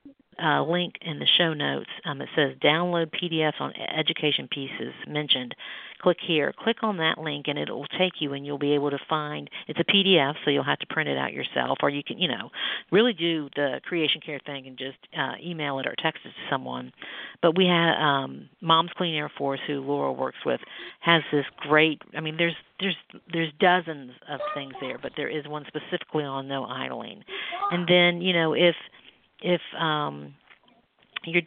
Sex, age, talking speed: female, 50-69, 195 wpm